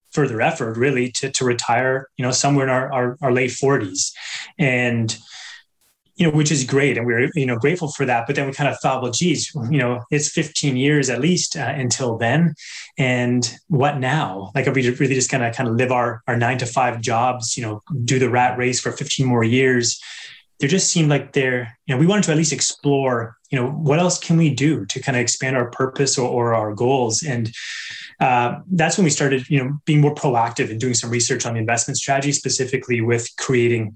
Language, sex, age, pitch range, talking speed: English, male, 20-39, 120-145 Hz, 225 wpm